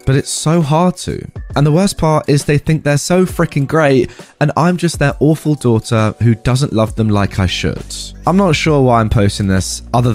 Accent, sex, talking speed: British, male, 220 wpm